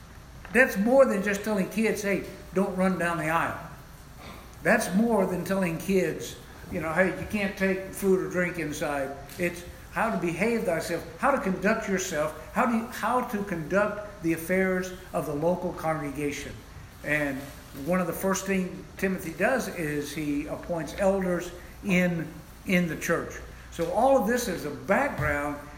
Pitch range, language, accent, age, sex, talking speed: 155-195 Hz, English, American, 60-79, male, 160 wpm